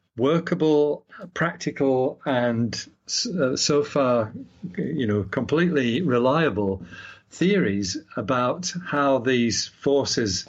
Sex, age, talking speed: male, 50-69, 80 wpm